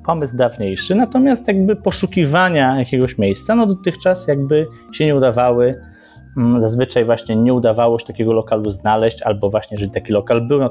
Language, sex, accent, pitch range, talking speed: Polish, male, native, 105-135 Hz, 155 wpm